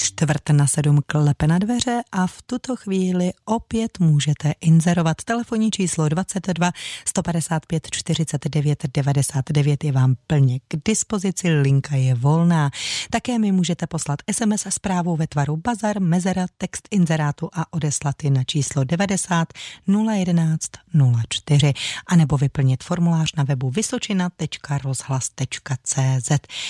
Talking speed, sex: 120 wpm, female